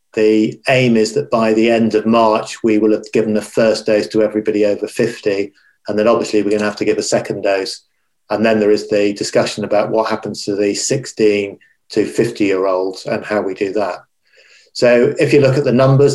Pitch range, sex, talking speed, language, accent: 105-120 Hz, male, 225 wpm, English, British